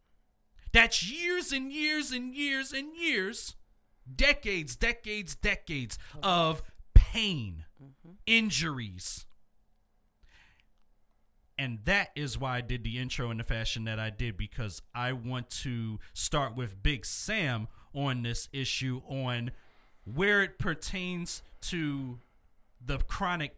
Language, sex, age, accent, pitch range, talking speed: English, male, 40-59, American, 105-155 Hz, 115 wpm